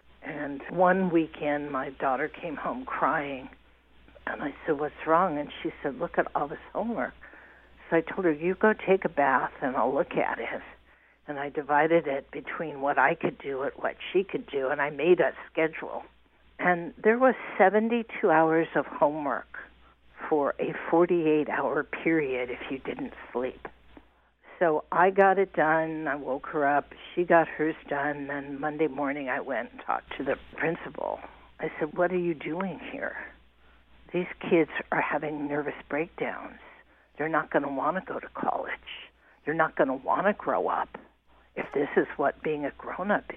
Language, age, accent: English, 60-79, American